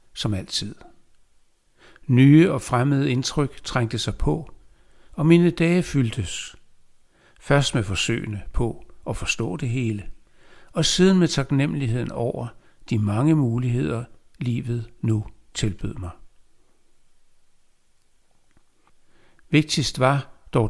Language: Danish